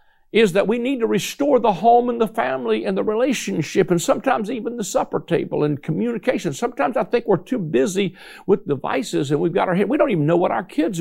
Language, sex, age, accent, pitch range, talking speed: English, male, 60-79, American, 165-235 Hz, 230 wpm